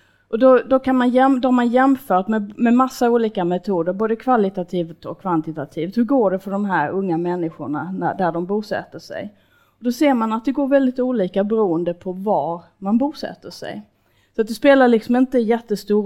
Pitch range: 170-225 Hz